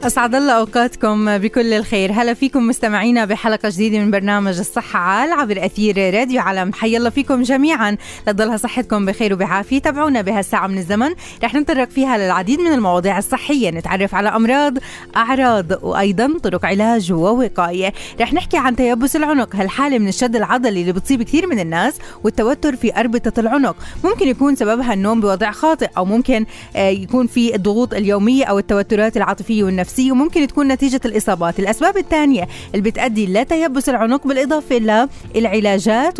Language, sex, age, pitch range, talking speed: Arabic, female, 20-39, 200-255 Hz, 150 wpm